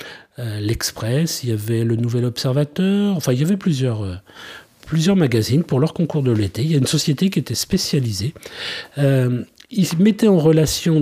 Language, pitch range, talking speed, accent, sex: French, 120-160 Hz, 175 wpm, French, male